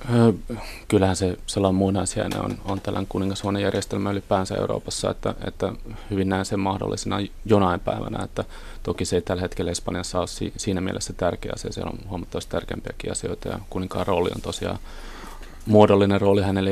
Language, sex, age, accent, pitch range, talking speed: Finnish, male, 30-49, native, 95-110 Hz, 165 wpm